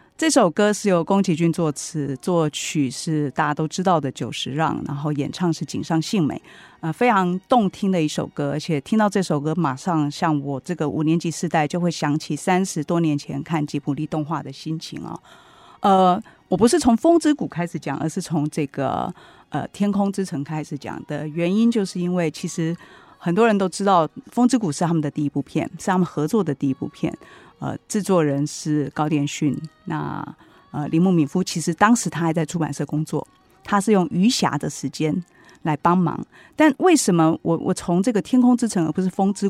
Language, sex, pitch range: Chinese, female, 150-200 Hz